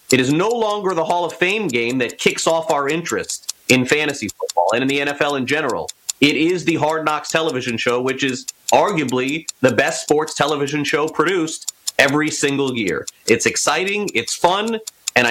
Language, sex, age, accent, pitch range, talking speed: English, male, 30-49, American, 115-165 Hz, 185 wpm